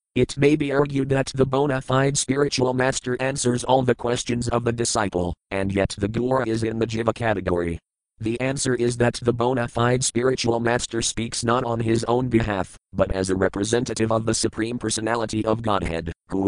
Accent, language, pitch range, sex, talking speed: American, English, 105-125 Hz, male, 190 wpm